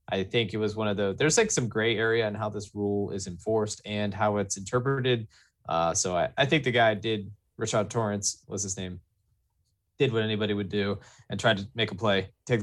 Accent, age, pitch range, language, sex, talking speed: American, 20-39, 100-120 Hz, English, male, 230 wpm